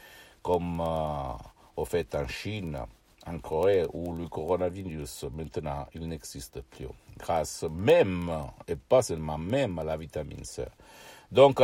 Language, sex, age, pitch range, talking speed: Italian, male, 60-79, 90-105 Hz, 135 wpm